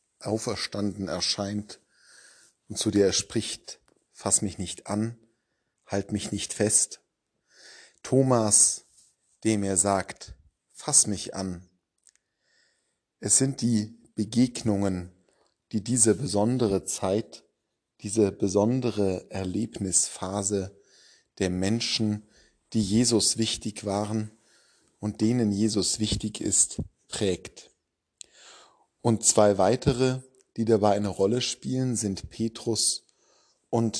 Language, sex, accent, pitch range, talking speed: German, male, German, 100-115 Hz, 100 wpm